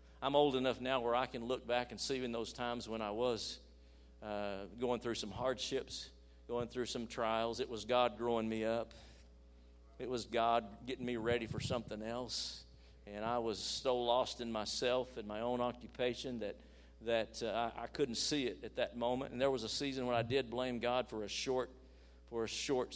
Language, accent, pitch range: English, American, 105-125 Hz